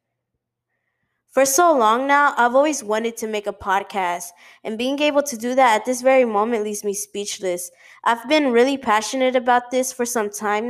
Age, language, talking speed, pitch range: 20-39, English, 185 wpm, 205-255 Hz